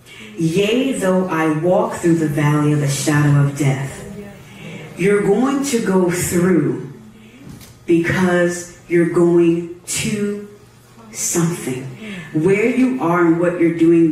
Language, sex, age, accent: English, female, 40-59, American